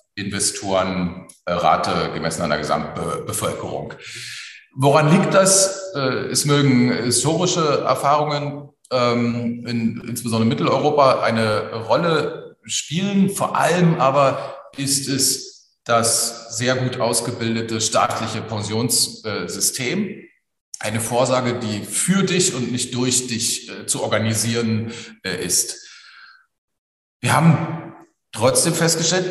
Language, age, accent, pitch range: German, 40-59, German, 105-150 Hz